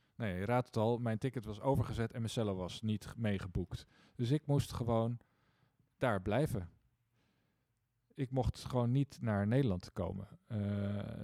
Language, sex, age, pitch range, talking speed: Dutch, male, 40-59, 105-130 Hz, 155 wpm